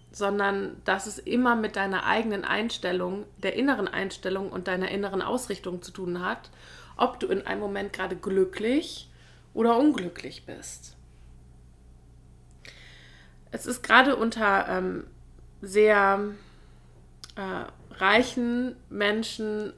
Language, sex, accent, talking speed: German, female, German, 110 wpm